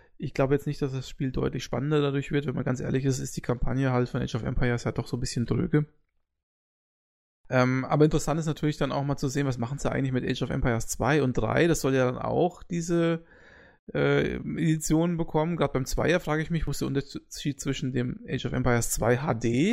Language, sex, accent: German, male, German